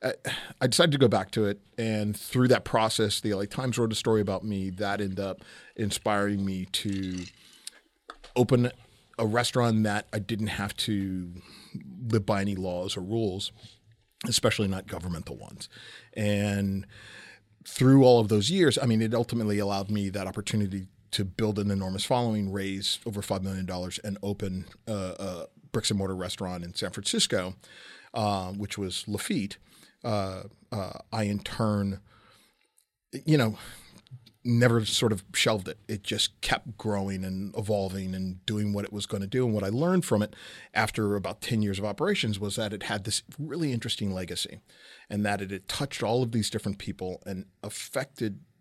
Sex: male